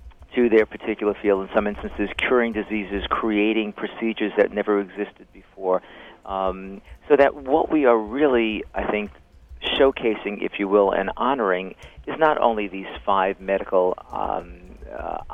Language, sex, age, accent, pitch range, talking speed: English, male, 50-69, American, 95-115 Hz, 150 wpm